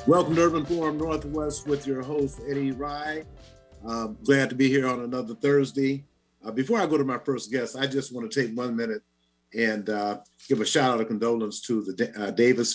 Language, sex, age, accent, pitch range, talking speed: English, male, 50-69, American, 105-130 Hz, 215 wpm